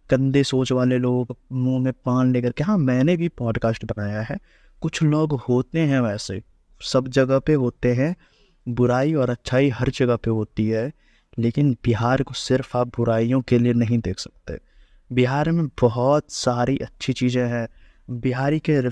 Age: 20-39